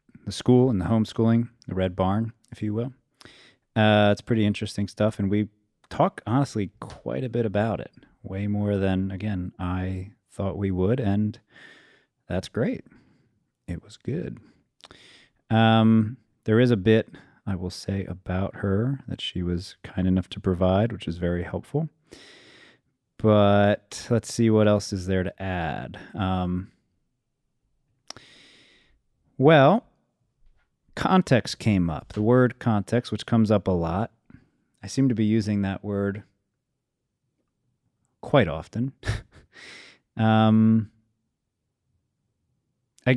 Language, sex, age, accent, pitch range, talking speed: English, male, 30-49, American, 100-120 Hz, 130 wpm